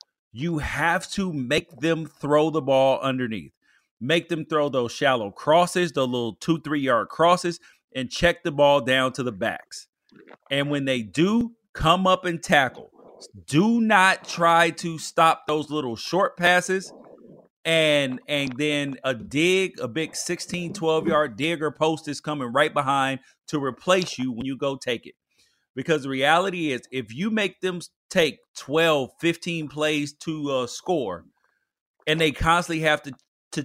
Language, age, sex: English, 30-49, male